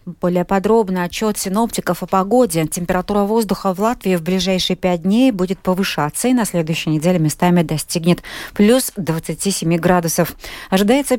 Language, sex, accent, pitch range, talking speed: Russian, female, native, 155-205 Hz, 140 wpm